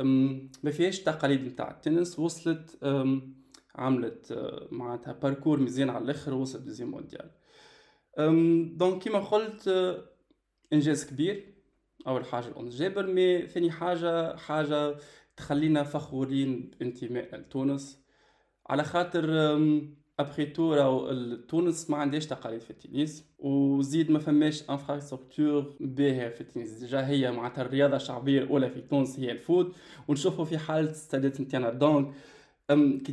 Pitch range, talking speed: 130-155 Hz, 120 wpm